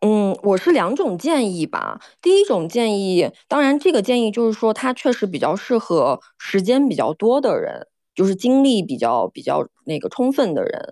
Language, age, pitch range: Chinese, 20-39, 205-290 Hz